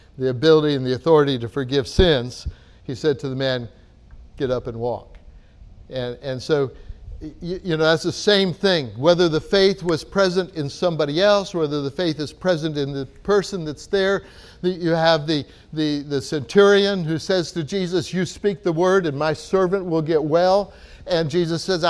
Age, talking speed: 60-79, 185 wpm